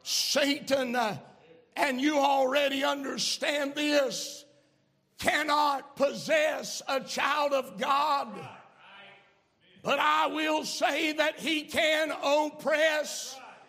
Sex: male